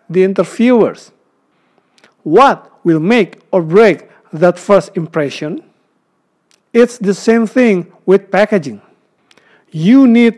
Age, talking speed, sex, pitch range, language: 50-69, 105 wpm, male, 185-230 Hz, Indonesian